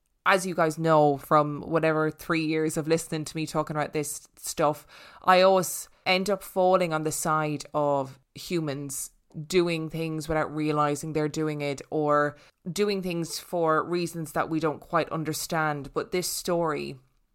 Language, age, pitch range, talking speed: English, 20-39, 150-170 Hz, 160 wpm